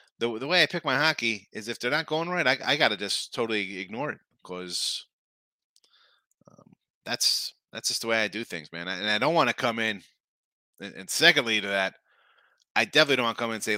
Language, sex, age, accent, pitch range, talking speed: English, male, 30-49, American, 100-135 Hz, 220 wpm